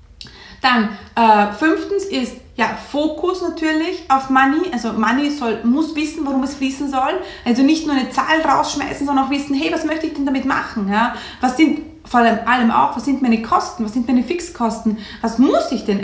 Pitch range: 215-275 Hz